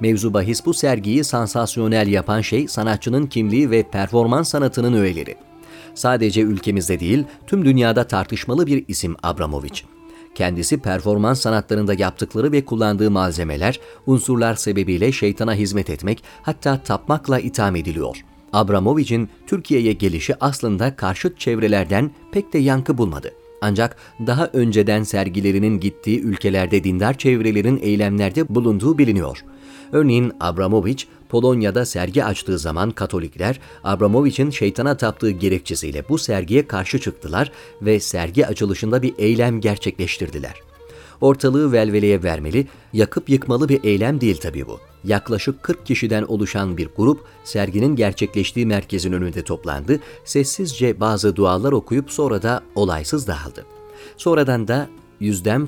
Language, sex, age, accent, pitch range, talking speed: Turkish, male, 40-59, native, 100-135 Hz, 120 wpm